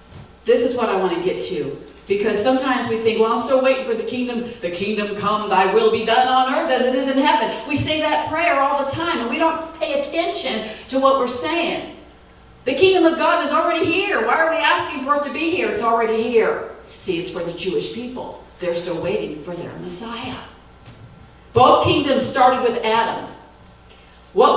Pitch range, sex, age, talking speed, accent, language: 185-300 Hz, female, 50-69, 210 wpm, American, English